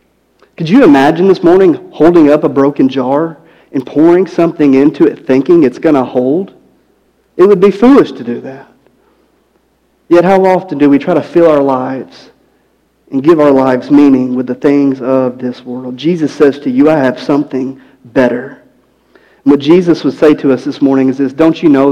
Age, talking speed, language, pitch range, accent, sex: 40-59, 190 wpm, English, 130-155 Hz, American, male